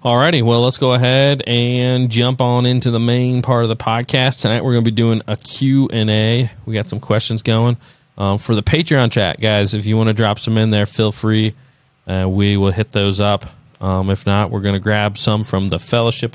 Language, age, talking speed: English, 30-49, 225 wpm